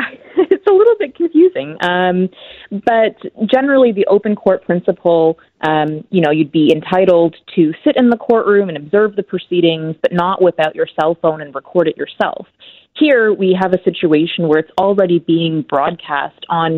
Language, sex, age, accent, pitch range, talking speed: English, female, 20-39, American, 155-190 Hz, 170 wpm